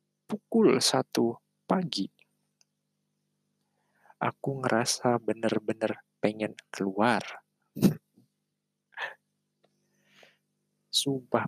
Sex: male